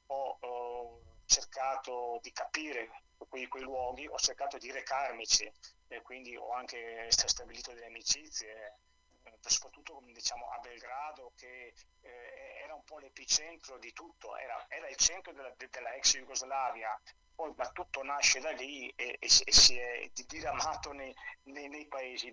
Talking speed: 135 wpm